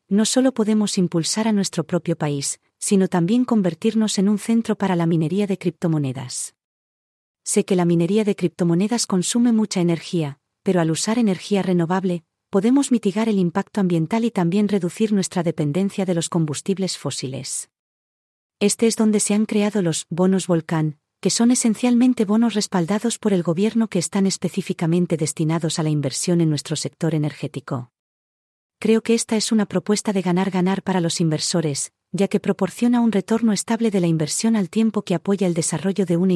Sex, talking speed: female, 170 wpm